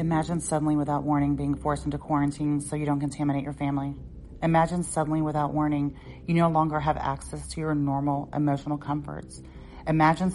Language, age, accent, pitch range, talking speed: English, 30-49, American, 140-160 Hz, 170 wpm